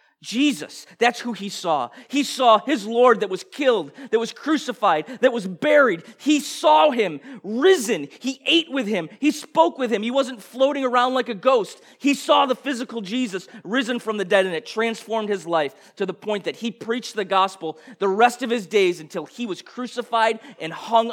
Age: 30-49